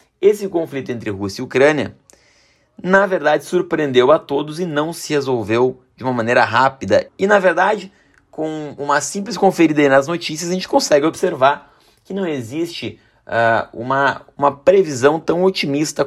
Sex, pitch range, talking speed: male, 130-175 Hz, 155 wpm